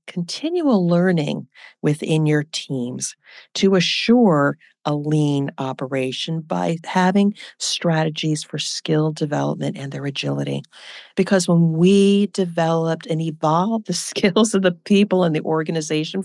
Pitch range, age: 150-180 Hz, 40-59